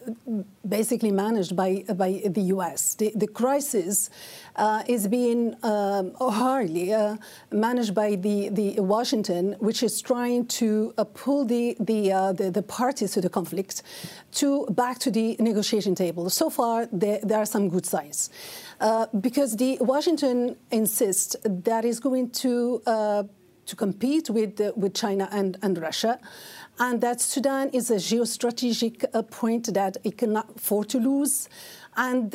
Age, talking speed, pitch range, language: 40-59, 155 wpm, 205-245 Hz, English